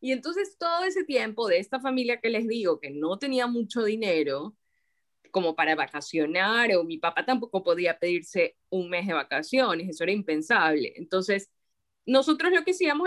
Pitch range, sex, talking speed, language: 190-260 Hz, female, 170 wpm, Spanish